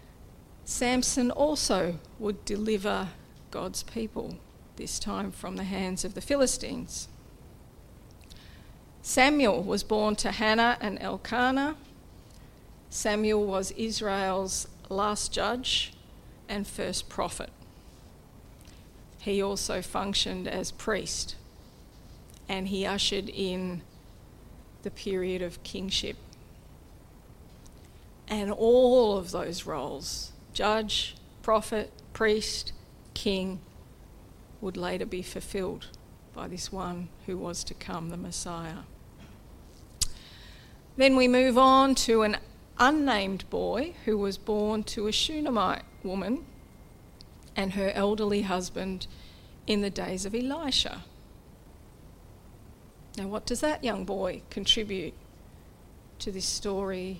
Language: English